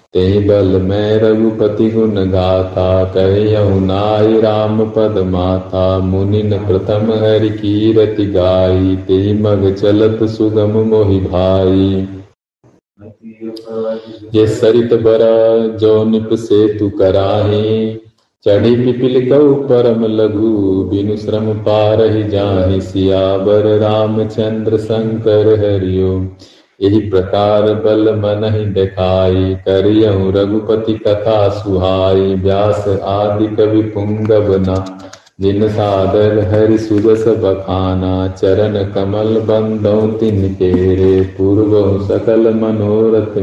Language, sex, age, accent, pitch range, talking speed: Hindi, male, 40-59, native, 95-110 Hz, 90 wpm